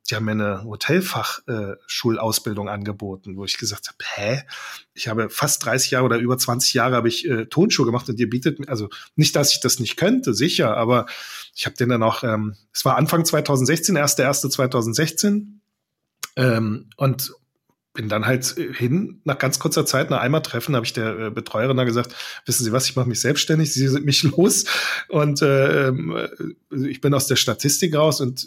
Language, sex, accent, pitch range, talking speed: German, male, German, 115-140 Hz, 190 wpm